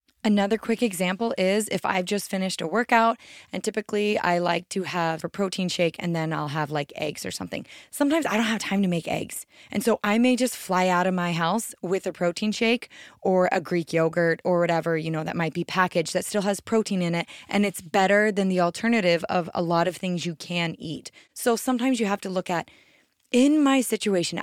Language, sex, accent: English, female, American